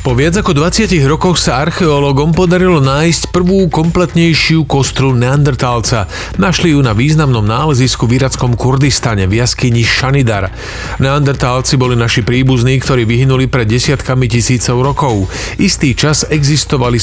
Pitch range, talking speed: 120-150 Hz, 125 wpm